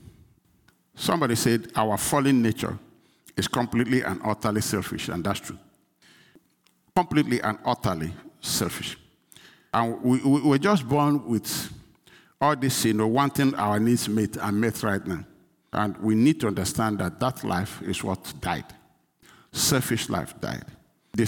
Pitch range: 105-140 Hz